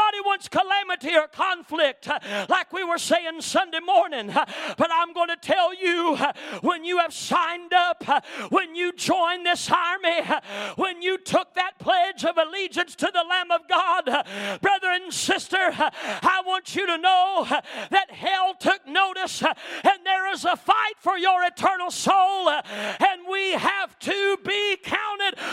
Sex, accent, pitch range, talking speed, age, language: male, American, 225-365 Hz, 155 wpm, 40-59, English